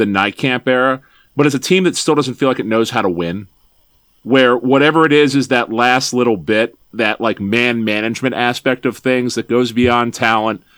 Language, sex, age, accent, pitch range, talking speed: English, male, 40-59, American, 110-130 Hz, 210 wpm